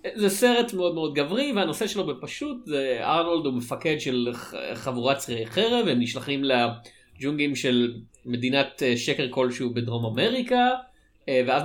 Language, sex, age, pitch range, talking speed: Hebrew, male, 30-49, 120-165 Hz, 135 wpm